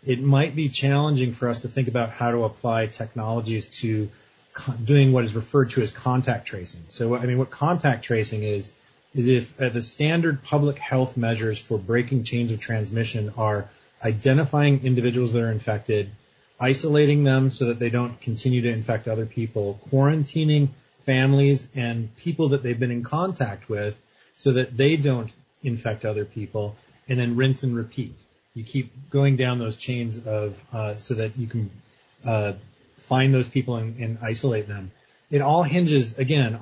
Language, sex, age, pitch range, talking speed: English, male, 30-49, 115-140 Hz, 170 wpm